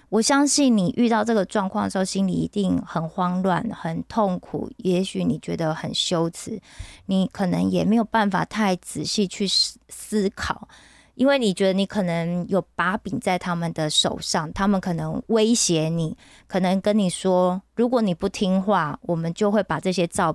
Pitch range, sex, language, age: 170-215 Hz, female, Korean, 20-39